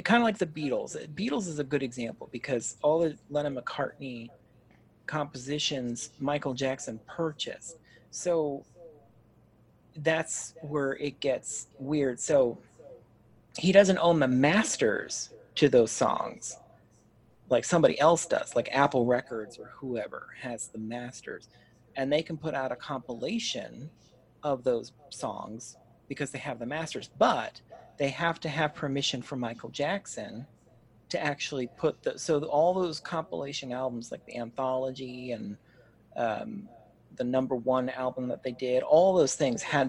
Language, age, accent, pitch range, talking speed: English, 40-59, American, 120-160 Hz, 145 wpm